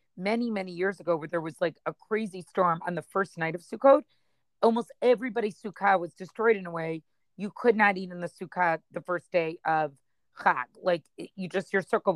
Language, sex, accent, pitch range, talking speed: English, female, American, 175-215 Hz, 205 wpm